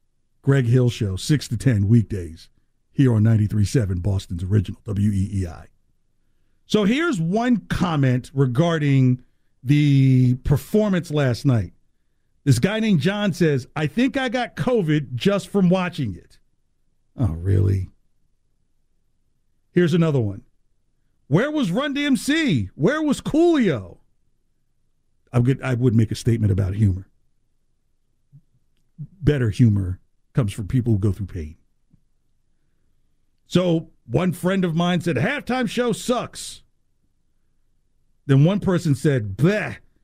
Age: 50-69